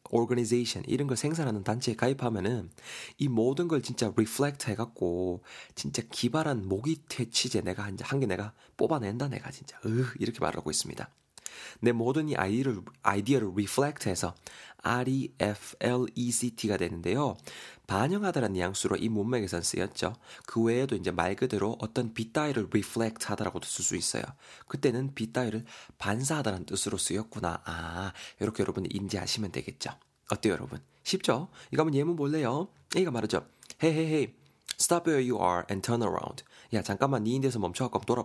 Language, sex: Korean, male